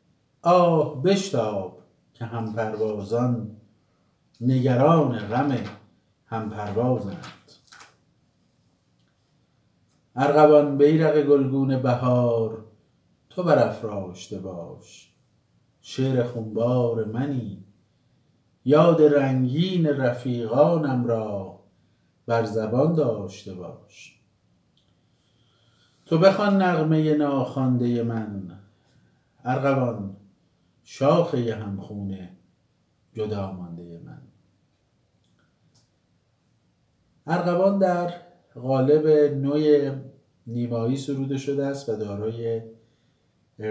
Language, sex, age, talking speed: Persian, male, 50-69, 65 wpm